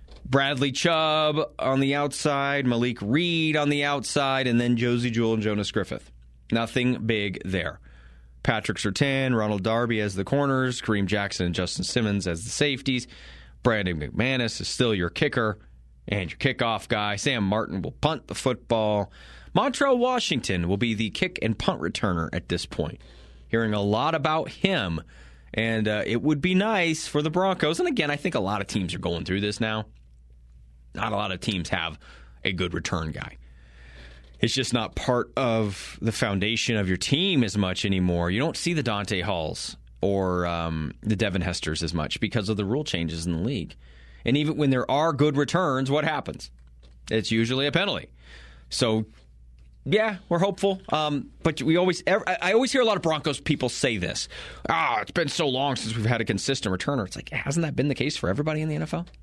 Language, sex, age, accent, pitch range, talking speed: English, male, 30-49, American, 85-140 Hz, 190 wpm